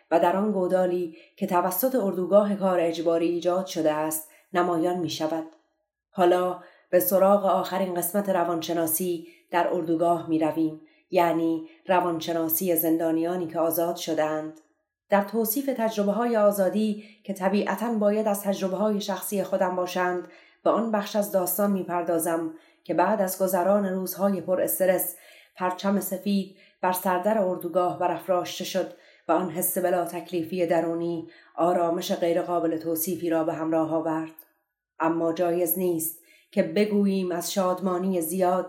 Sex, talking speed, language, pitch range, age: female, 135 wpm, Persian, 165-190 Hz, 30-49